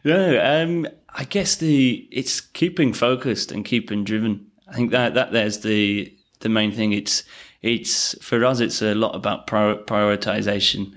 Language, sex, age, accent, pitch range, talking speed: English, male, 20-39, British, 100-110 Hz, 160 wpm